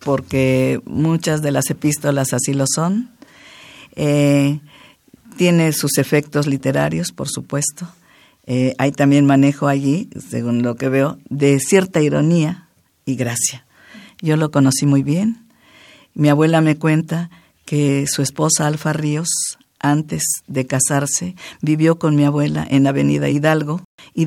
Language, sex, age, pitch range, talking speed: Spanish, female, 50-69, 140-170 Hz, 135 wpm